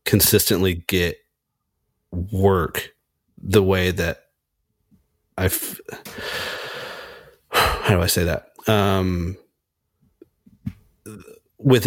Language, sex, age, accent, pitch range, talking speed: English, male, 30-49, American, 90-110 Hz, 70 wpm